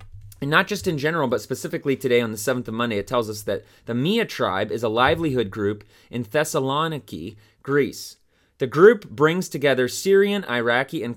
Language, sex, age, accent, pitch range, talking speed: English, male, 30-49, American, 100-125 Hz, 185 wpm